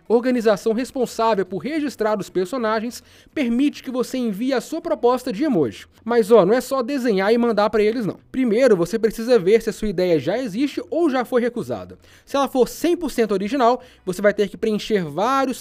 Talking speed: 195 wpm